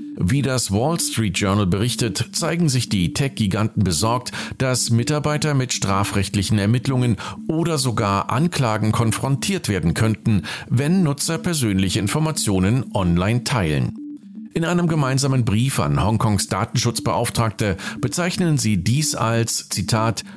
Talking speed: 120 wpm